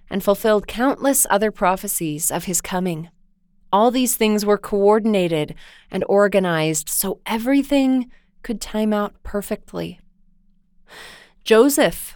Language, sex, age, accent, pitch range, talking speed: English, female, 20-39, American, 180-230 Hz, 110 wpm